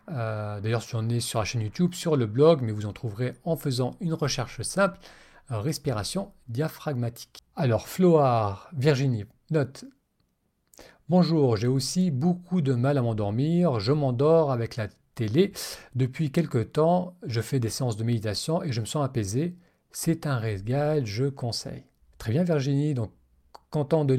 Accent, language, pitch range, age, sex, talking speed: French, French, 120-155 Hz, 40-59, male, 160 wpm